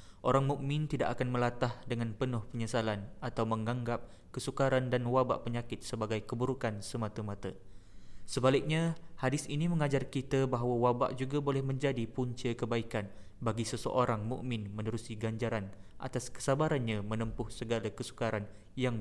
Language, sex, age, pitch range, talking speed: Malay, male, 20-39, 110-130 Hz, 125 wpm